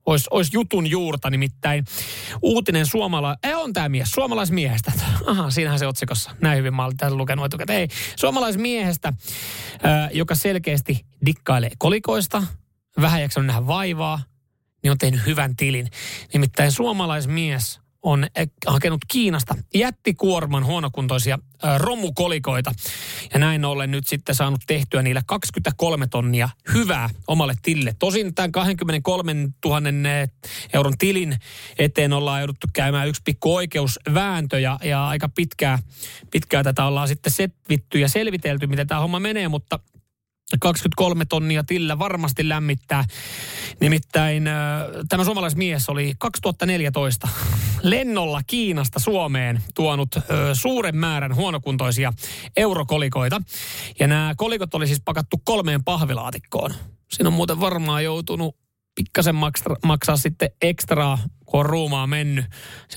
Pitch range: 135-170 Hz